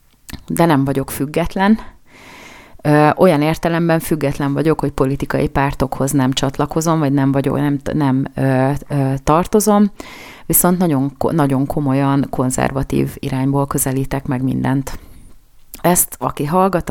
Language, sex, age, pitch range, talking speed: Hungarian, female, 30-49, 135-155 Hz, 115 wpm